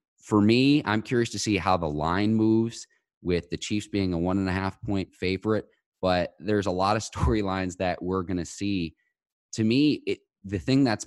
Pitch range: 90-105 Hz